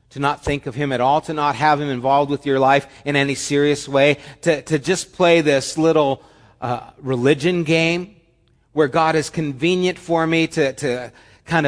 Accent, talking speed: American, 190 wpm